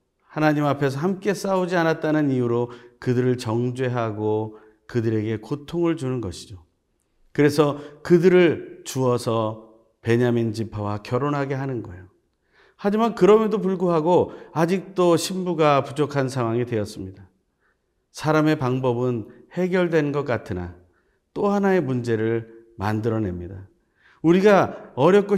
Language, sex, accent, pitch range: Korean, male, native, 110-165 Hz